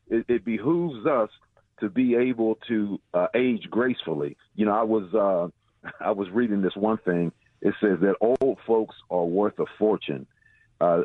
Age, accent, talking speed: 50-69, American, 175 wpm